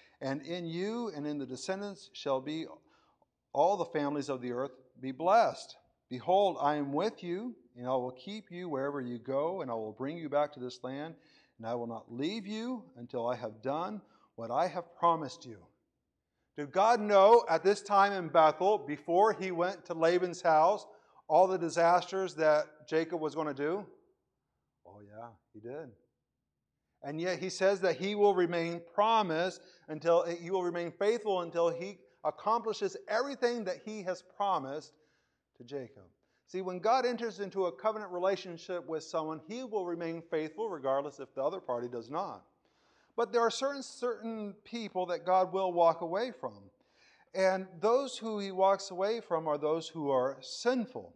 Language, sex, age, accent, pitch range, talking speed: English, male, 50-69, American, 150-200 Hz, 175 wpm